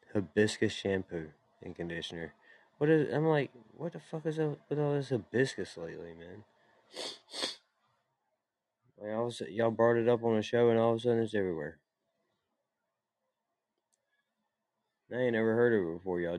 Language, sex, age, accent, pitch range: Chinese, male, 20-39, American, 85-115 Hz